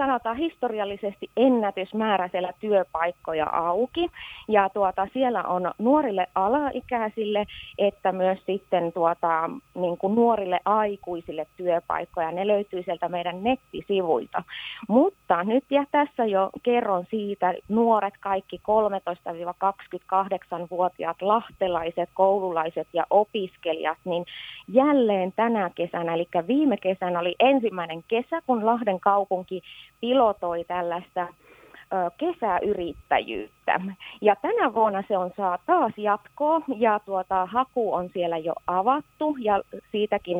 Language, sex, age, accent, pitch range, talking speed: Finnish, female, 30-49, native, 180-235 Hz, 110 wpm